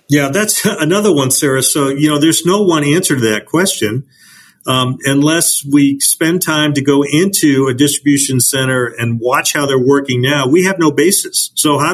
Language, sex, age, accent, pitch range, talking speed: English, male, 40-59, American, 125-155 Hz, 190 wpm